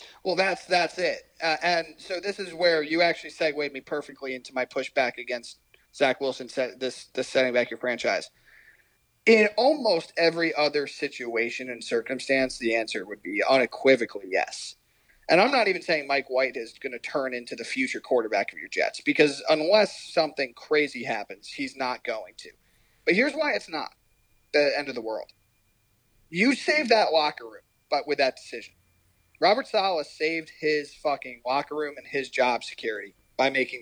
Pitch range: 130-180 Hz